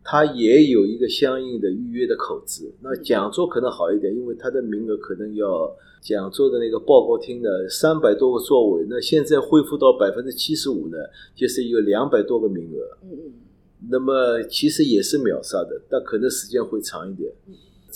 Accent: native